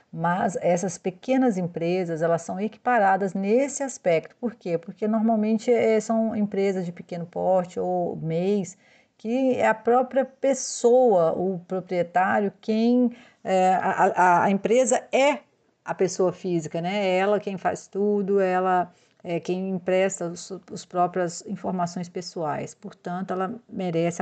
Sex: female